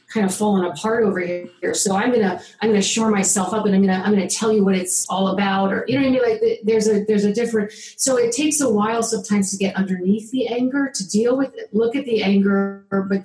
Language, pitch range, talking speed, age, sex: English, 190-225 Hz, 260 wpm, 40-59, female